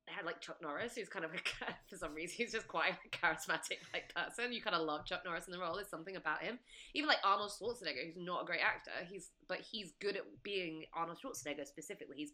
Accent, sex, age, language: British, female, 20-39, English